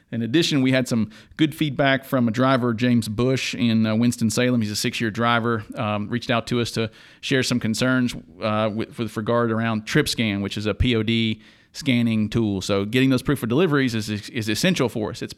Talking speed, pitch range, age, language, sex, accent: 205 wpm, 110-130 Hz, 40-59, English, male, American